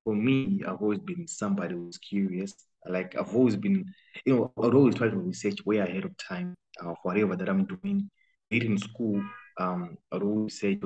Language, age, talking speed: English, 20-39, 195 wpm